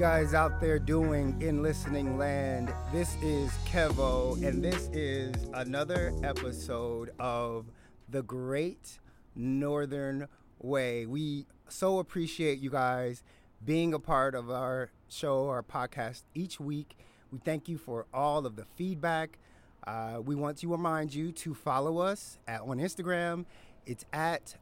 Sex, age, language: male, 30-49, English